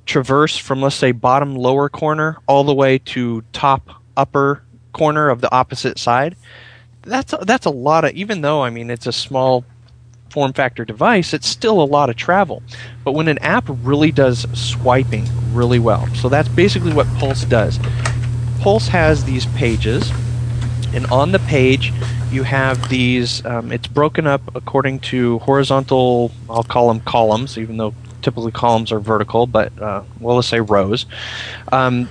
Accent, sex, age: American, male, 30-49